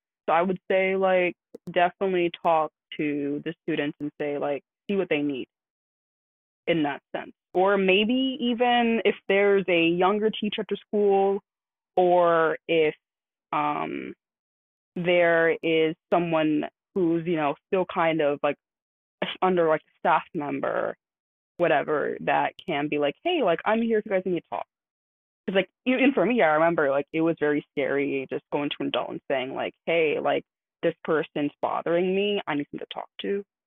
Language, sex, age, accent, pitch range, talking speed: English, female, 20-39, American, 155-205 Hz, 170 wpm